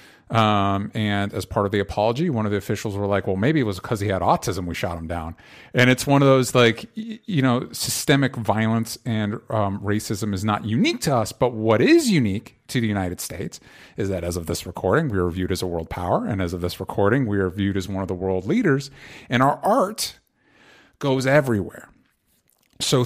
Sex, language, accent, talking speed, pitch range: male, English, American, 220 wpm, 105-135 Hz